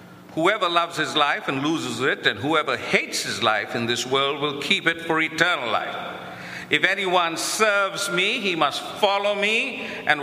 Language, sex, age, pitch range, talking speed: English, male, 50-69, 145-205 Hz, 175 wpm